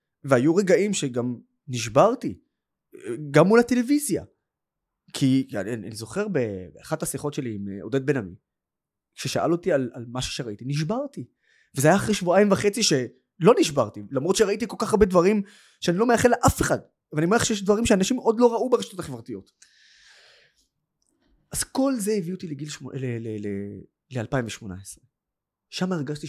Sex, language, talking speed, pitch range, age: male, Hebrew, 140 wpm, 110-165 Hz, 20-39